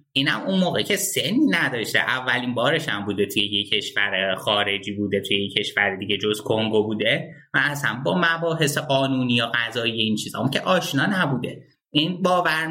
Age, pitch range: 30-49, 110-150 Hz